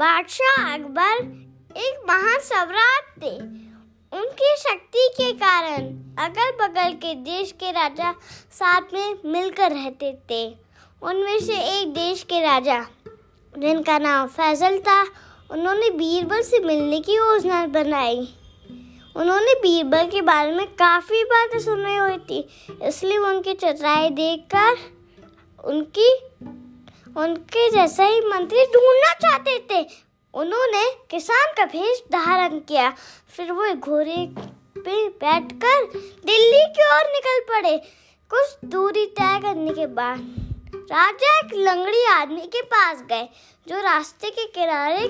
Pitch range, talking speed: 305-415 Hz, 125 wpm